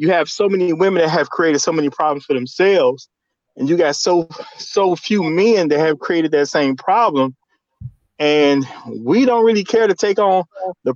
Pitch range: 150-200 Hz